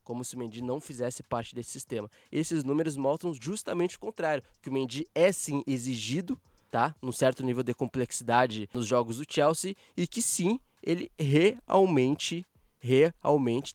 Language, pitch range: Portuguese, 115-150 Hz